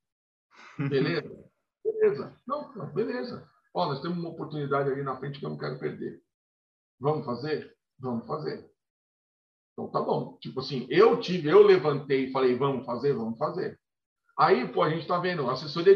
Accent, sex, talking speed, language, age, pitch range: Brazilian, male, 165 wpm, Portuguese, 50-69, 140-190 Hz